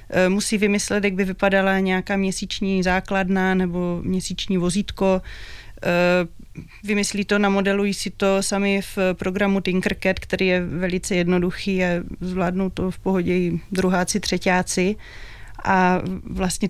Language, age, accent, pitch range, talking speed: Czech, 30-49, native, 180-205 Hz, 120 wpm